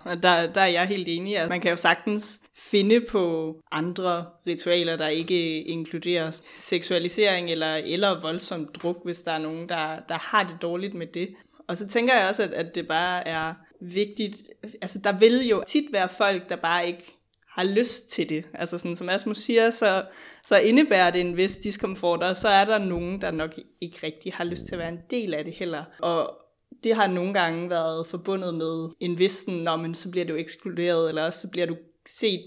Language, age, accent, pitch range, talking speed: Danish, 20-39, native, 165-195 Hz, 205 wpm